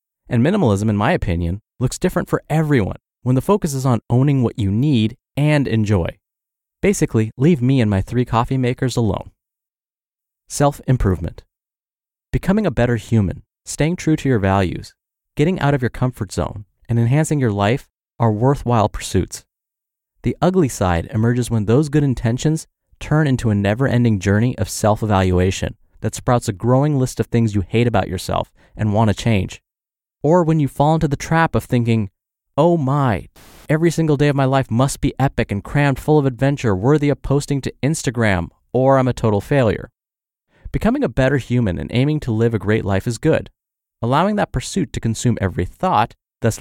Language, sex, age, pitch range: English, male, 30-49, 105-140 Hz